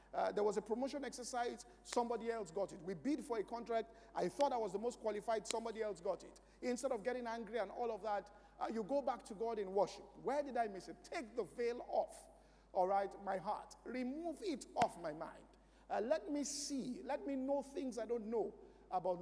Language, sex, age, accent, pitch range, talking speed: English, male, 50-69, Nigerian, 210-280 Hz, 225 wpm